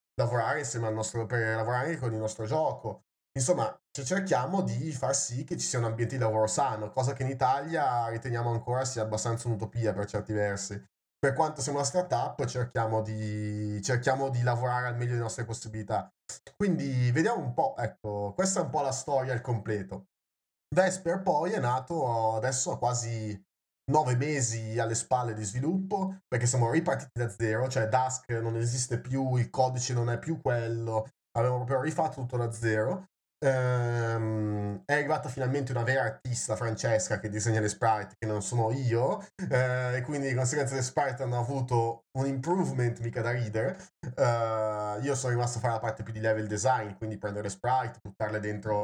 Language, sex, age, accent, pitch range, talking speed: Italian, male, 20-39, native, 110-130 Hz, 175 wpm